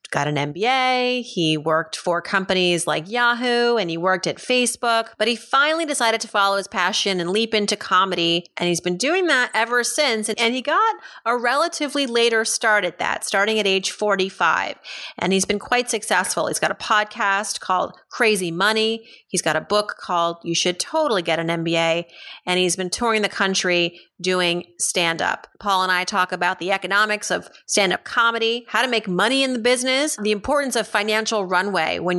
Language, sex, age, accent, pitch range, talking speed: English, female, 30-49, American, 180-240 Hz, 190 wpm